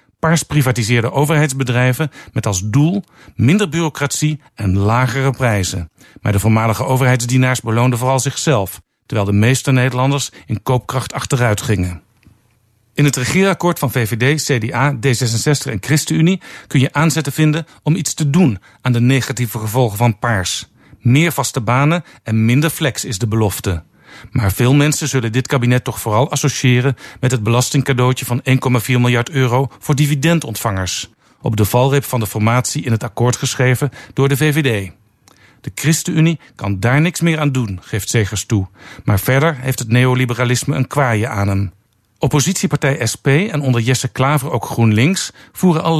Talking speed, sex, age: 155 wpm, male, 50-69